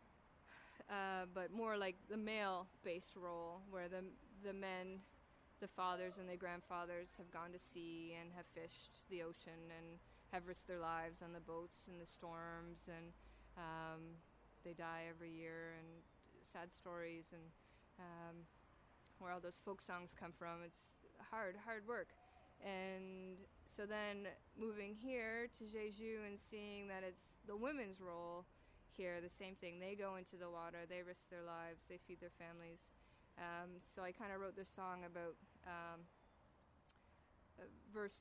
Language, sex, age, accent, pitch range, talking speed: English, female, 20-39, American, 170-195 Hz, 155 wpm